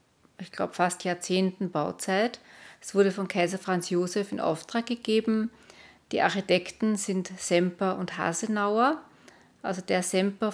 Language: German